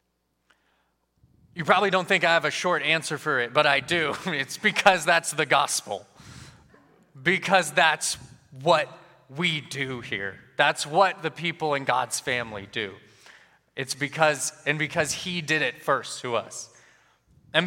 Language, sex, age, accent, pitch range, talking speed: English, male, 20-39, American, 145-190 Hz, 150 wpm